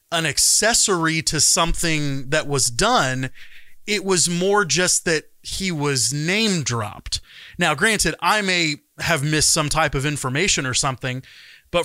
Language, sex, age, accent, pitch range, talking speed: English, male, 30-49, American, 130-170 Hz, 145 wpm